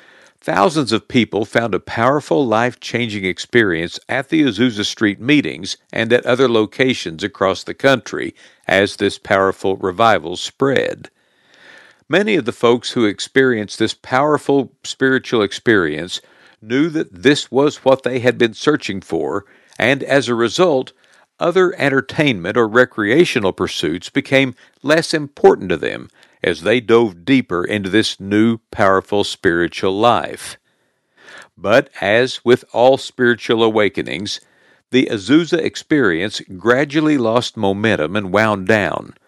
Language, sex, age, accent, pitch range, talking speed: English, male, 60-79, American, 105-135 Hz, 130 wpm